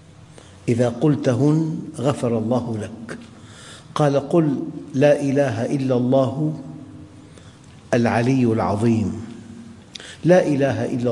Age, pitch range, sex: 50-69, 110-140 Hz, male